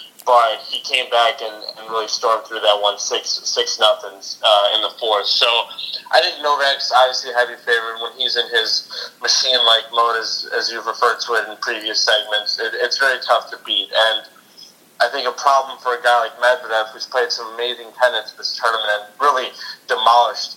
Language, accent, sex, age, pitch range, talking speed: English, American, male, 20-39, 110-120 Hz, 195 wpm